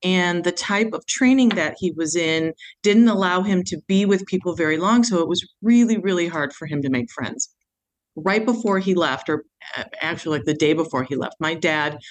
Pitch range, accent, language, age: 155-190 Hz, American, English, 40-59